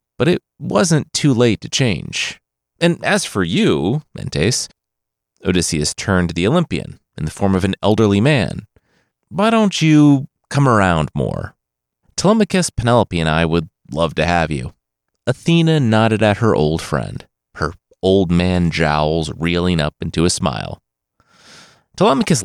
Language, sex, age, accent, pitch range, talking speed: English, male, 30-49, American, 80-120 Hz, 145 wpm